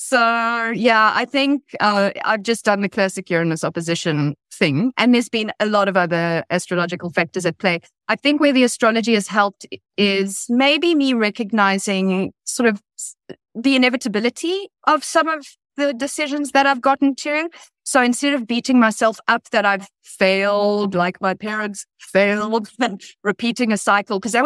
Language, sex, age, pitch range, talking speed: English, female, 30-49, 170-230 Hz, 160 wpm